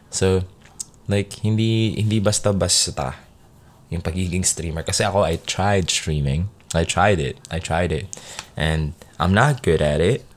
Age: 20-39